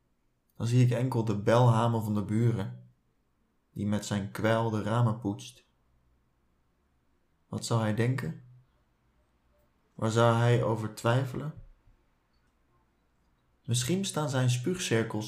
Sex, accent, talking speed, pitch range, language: male, Dutch, 115 wpm, 90-125 Hz, Dutch